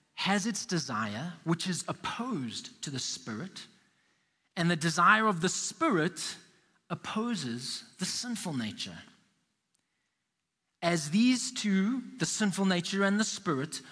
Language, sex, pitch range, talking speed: English, male, 160-220 Hz, 120 wpm